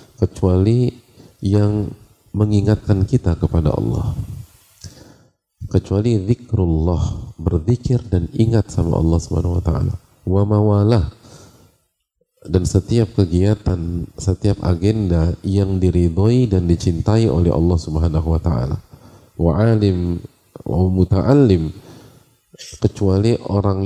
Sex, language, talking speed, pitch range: male, English, 90 wpm, 85-110 Hz